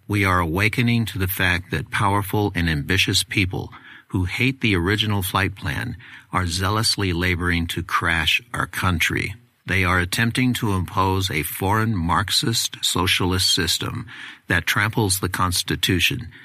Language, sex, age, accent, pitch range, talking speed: English, male, 60-79, American, 90-115 Hz, 140 wpm